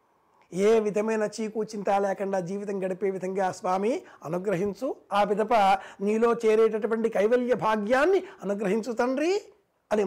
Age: 60-79